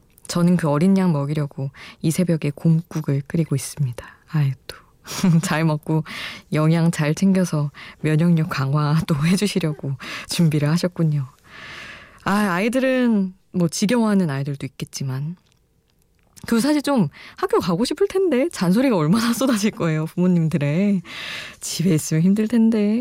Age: 20-39